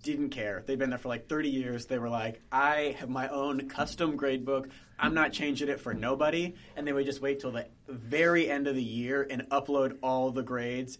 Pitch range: 125-155 Hz